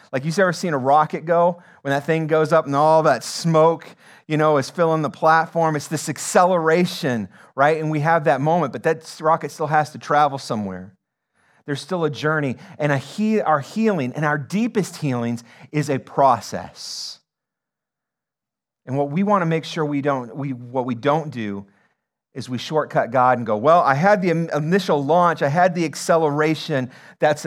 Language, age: English, 40-59